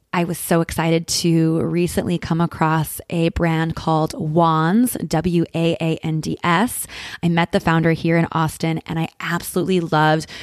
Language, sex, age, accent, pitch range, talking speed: English, female, 20-39, American, 160-180 Hz, 140 wpm